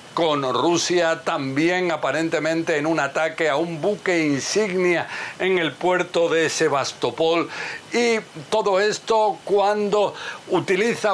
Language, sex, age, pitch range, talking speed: Spanish, male, 60-79, 170-215 Hz, 115 wpm